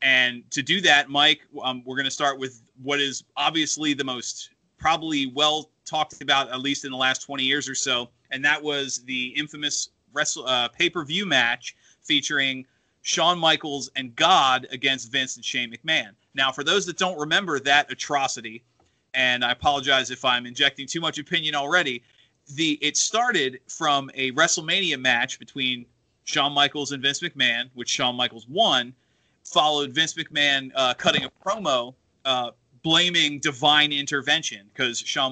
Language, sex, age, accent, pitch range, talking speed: English, male, 30-49, American, 125-150 Hz, 160 wpm